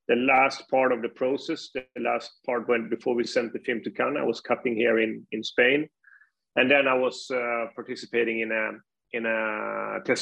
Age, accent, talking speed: 30-49, Swedish, 195 wpm